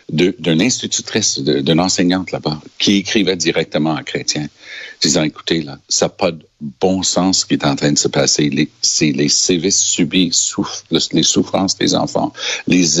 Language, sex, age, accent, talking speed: French, male, 60-79, Canadian, 180 wpm